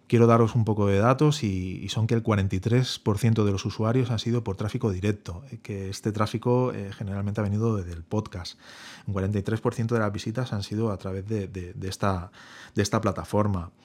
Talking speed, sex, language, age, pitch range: 190 wpm, male, Spanish, 30-49, 95-115 Hz